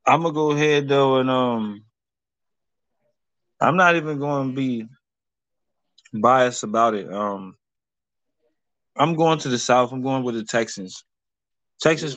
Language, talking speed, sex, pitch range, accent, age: English, 145 wpm, male, 120-135 Hz, American, 20-39